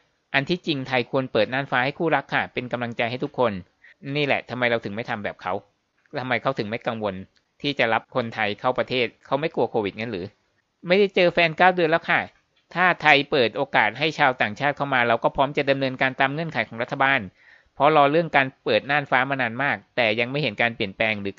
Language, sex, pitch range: Thai, male, 115-145 Hz